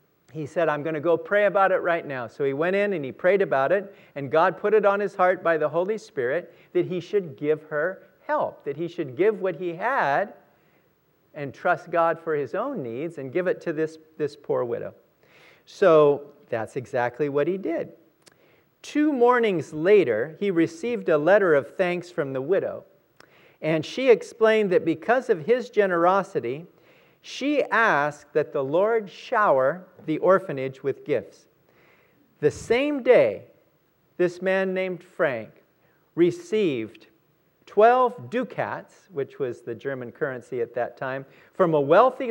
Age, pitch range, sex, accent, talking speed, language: 50-69, 155-225 Hz, male, American, 165 wpm, English